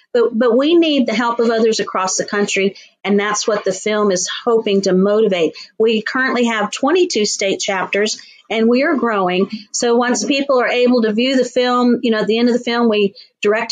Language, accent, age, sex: English, American, 50-69, female